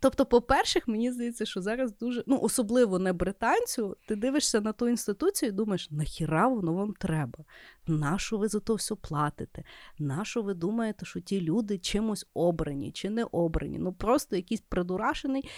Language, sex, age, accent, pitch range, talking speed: Ukrainian, female, 30-49, native, 185-255 Hz, 165 wpm